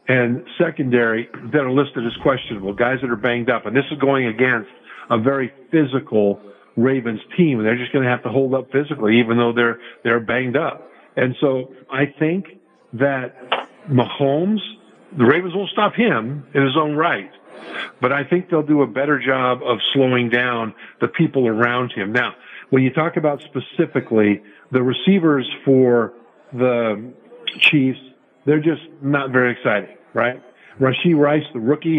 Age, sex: 50-69, male